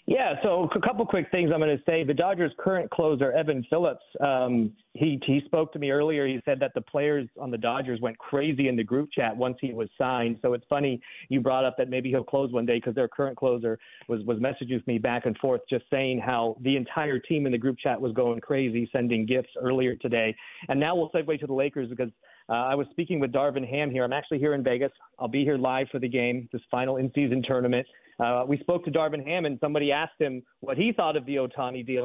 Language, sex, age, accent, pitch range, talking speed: English, male, 40-59, American, 130-160 Hz, 245 wpm